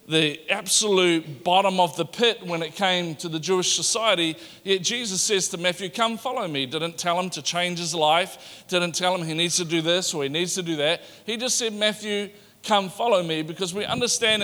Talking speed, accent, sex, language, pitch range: 215 wpm, Australian, male, English, 160-205 Hz